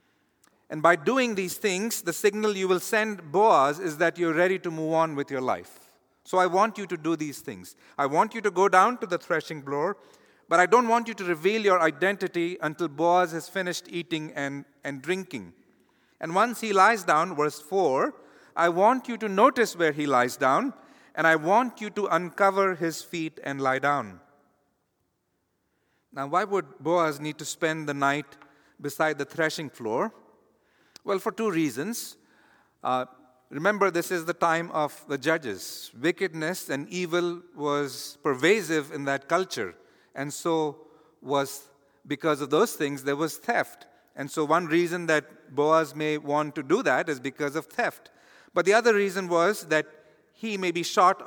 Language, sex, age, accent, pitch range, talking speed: English, male, 50-69, Indian, 150-185 Hz, 180 wpm